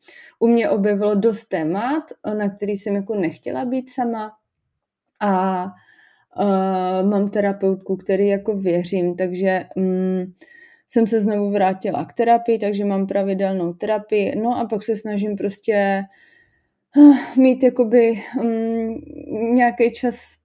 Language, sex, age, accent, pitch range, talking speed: Czech, female, 20-39, native, 195-235 Hz, 125 wpm